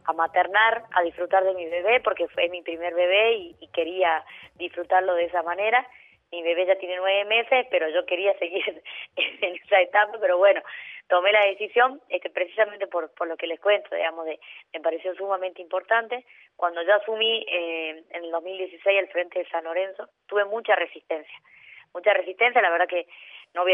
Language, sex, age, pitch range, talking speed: Spanish, female, 20-39, 165-200 Hz, 185 wpm